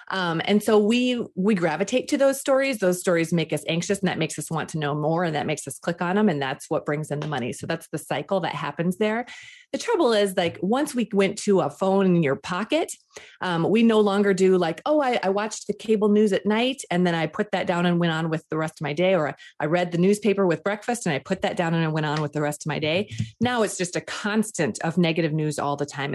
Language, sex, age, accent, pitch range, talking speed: English, female, 30-49, American, 160-215 Hz, 275 wpm